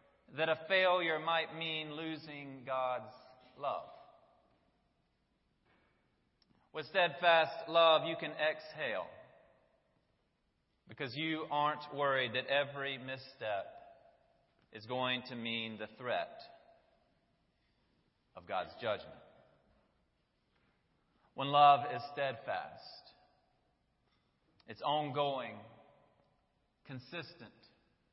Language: English